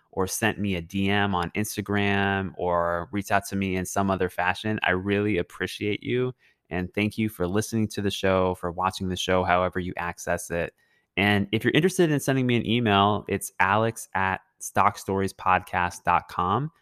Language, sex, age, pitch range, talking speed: English, male, 20-39, 90-105 Hz, 175 wpm